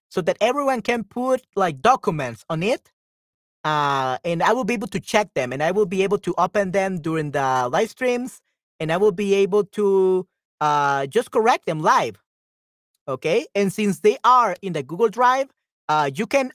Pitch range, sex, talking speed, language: 160-215 Hz, male, 190 wpm, Spanish